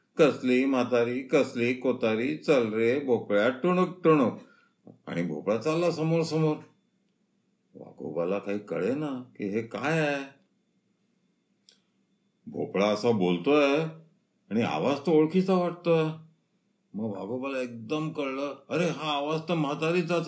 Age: 50-69